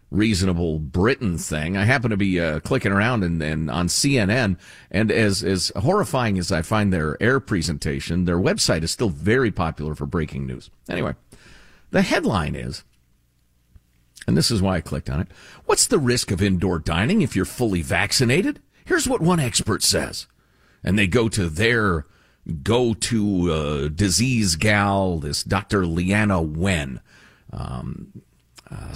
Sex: male